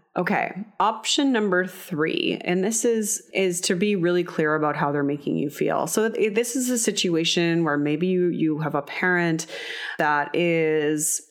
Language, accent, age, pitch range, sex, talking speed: English, American, 30-49, 155-185 Hz, female, 170 wpm